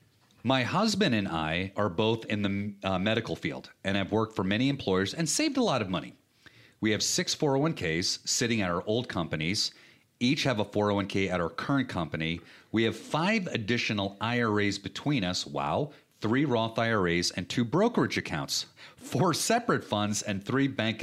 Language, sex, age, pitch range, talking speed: English, male, 40-59, 95-125 Hz, 175 wpm